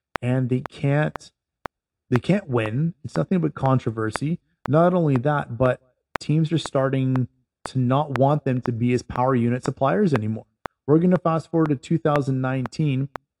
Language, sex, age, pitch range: English, male, 30-49, 125-150 Hz